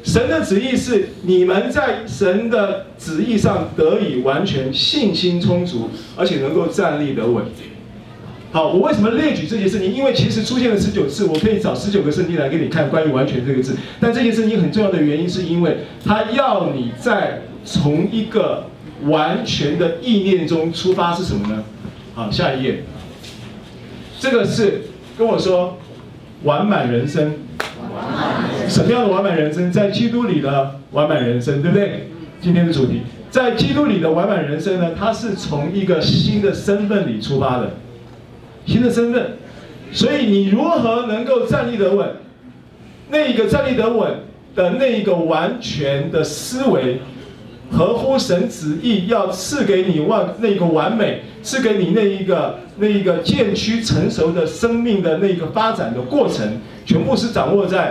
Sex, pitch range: male, 155-220 Hz